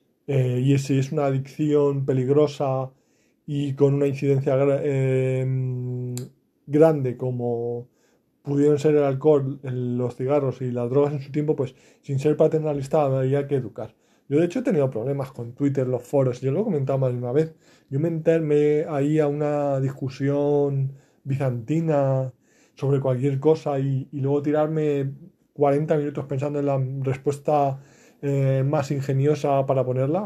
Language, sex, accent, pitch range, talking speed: Spanish, male, Spanish, 135-155 Hz, 160 wpm